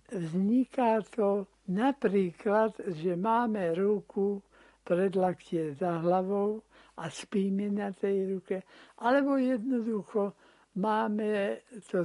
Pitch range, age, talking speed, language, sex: 180-215 Hz, 60-79, 95 wpm, Slovak, male